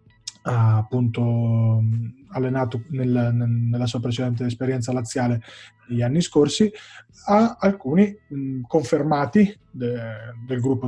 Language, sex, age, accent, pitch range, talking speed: Italian, male, 20-39, native, 120-145 Hz, 100 wpm